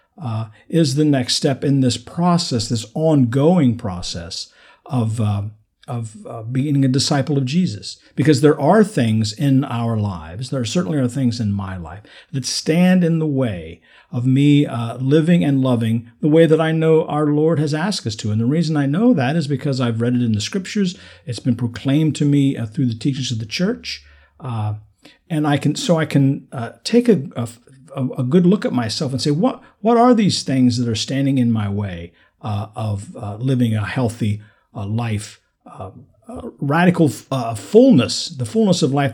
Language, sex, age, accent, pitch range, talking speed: English, male, 50-69, American, 115-150 Hz, 195 wpm